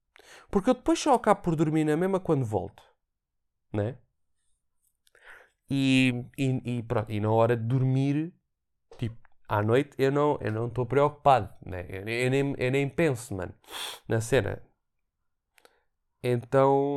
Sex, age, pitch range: male, 20-39, 125-165 Hz